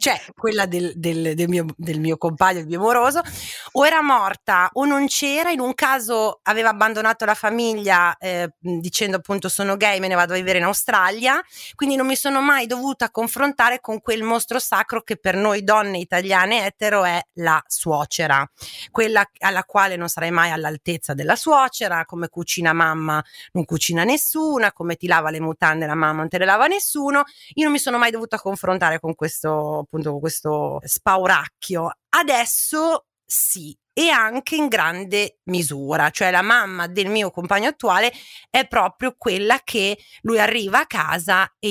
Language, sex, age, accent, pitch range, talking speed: Italian, female, 30-49, native, 170-230 Hz, 170 wpm